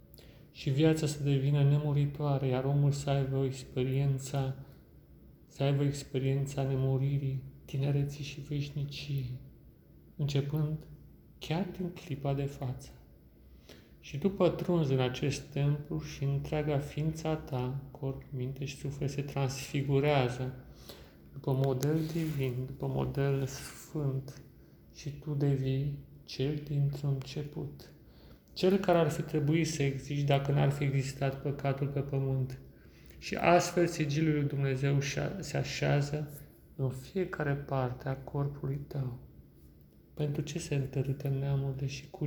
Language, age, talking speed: Romanian, 30-49, 120 wpm